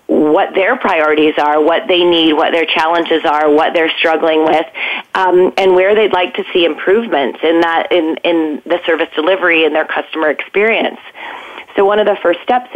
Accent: American